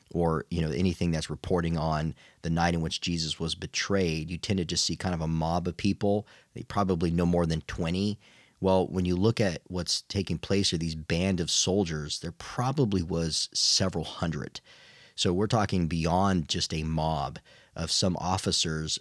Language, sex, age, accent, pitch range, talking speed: English, male, 40-59, American, 80-100 Hz, 185 wpm